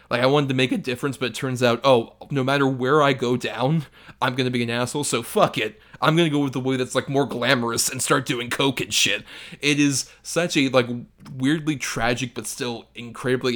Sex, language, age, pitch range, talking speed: male, English, 30-49, 120-145 Hz, 230 wpm